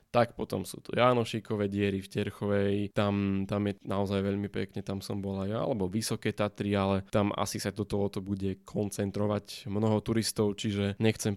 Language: Slovak